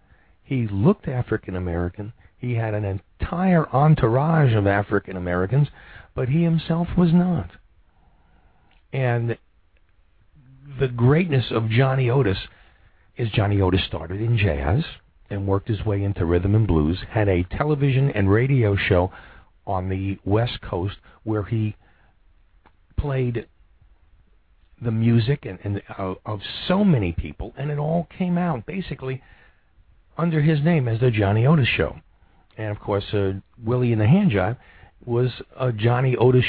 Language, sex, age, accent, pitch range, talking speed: English, male, 50-69, American, 90-130 Hz, 135 wpm